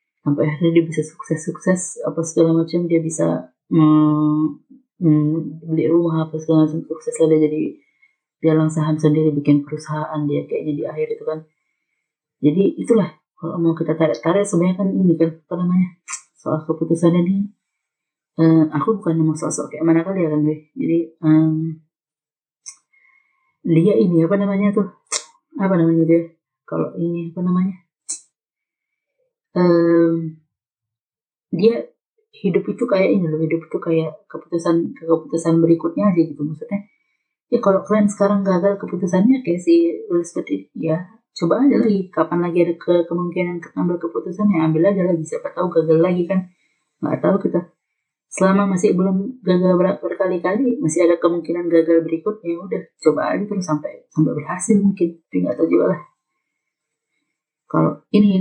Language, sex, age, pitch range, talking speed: Indonesian, female, 30-49, 155-190 Hz, 145 wpm